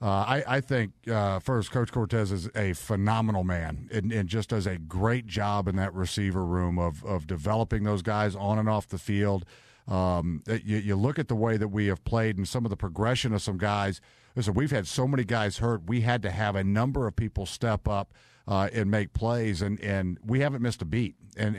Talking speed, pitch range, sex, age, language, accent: 225 wpm, 100-115 Hz, male, 50-69, English, American